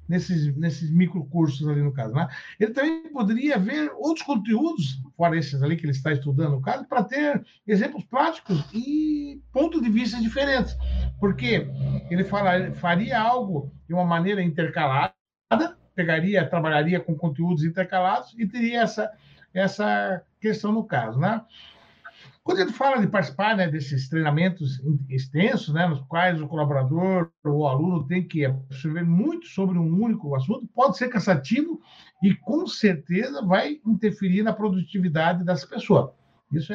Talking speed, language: 150 wpm, Portuguese